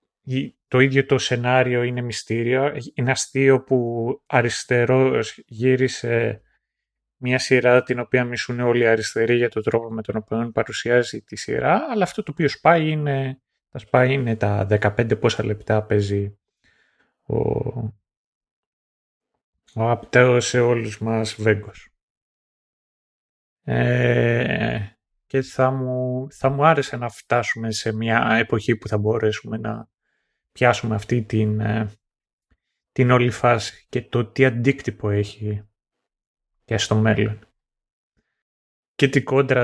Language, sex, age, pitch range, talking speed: Greek, male, 30-49, 110-130 Hz, 125 wpm